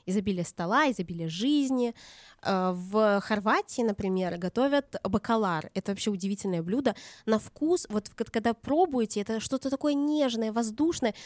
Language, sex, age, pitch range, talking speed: Russian, female, 20-39, 190-245 Hz, 125 wpm